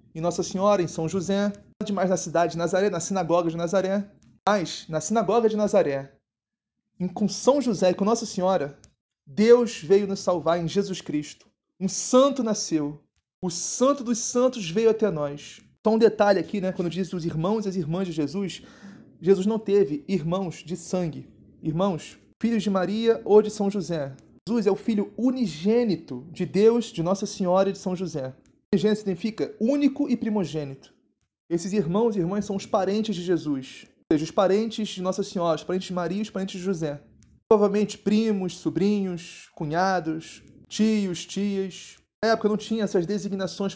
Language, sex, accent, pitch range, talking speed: Portuguese, male, Brazilian, 175-215 Hz, 175 wpm